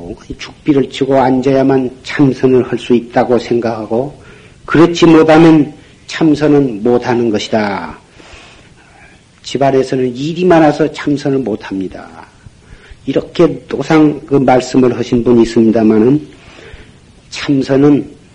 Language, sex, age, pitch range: Korean, male, 50-69, 125-165 Hz